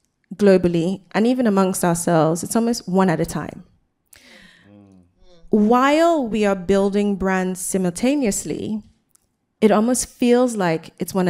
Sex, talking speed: female, 120 wpm